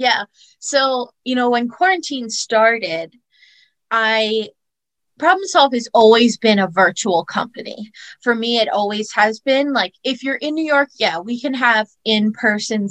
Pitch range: 200-250 Hz